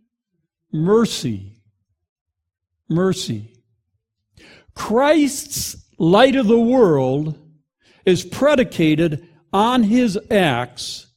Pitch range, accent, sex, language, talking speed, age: 145-245 Hz, American, male, English, 65 wpm, 60-79